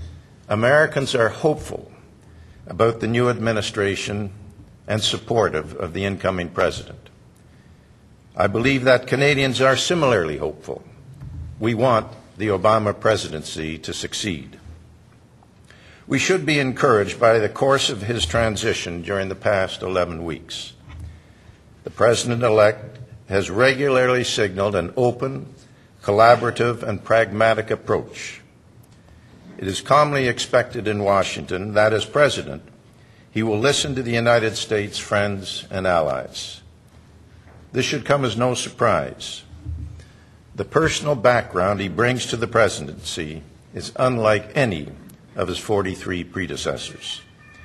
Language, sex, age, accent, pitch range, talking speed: English, male, 60-79, American, 100-125 Hz, 115 wpm